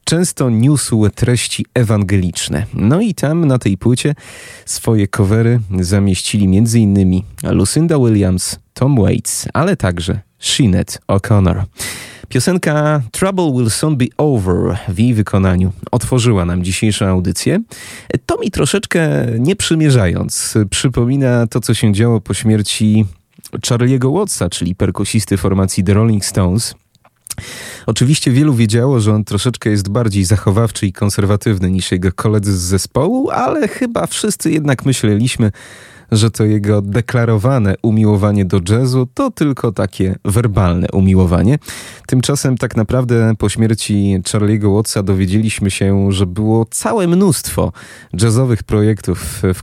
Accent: native